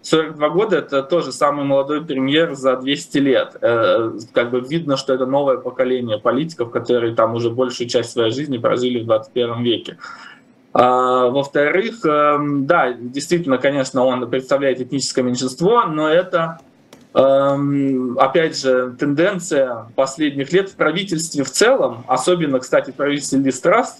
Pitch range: 125-145 Hz